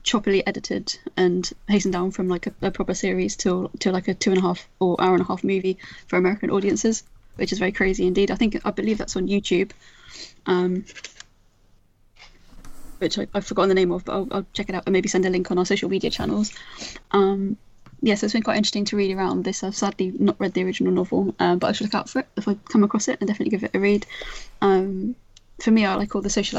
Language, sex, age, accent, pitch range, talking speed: English, female, 10-29, British, 180-200 Hz, 250 wpm